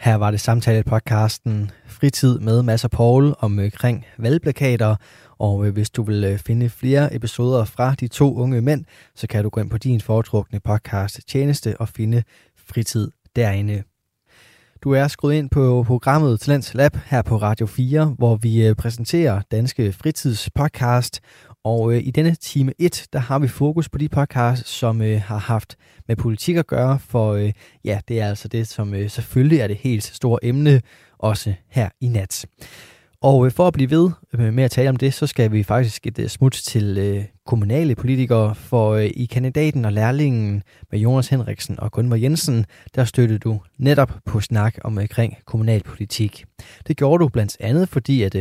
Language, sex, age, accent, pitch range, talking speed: Danish, male, 20-39, native, 110-135 Hz, 175 wpm